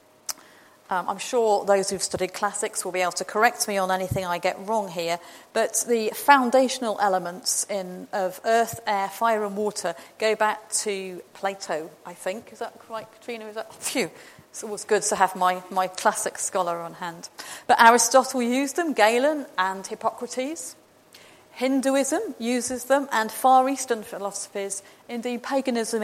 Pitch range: 190-250 Hz